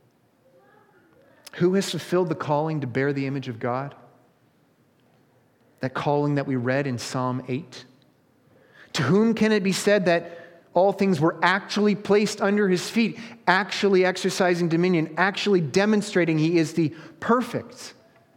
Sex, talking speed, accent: male, 140 wpm, American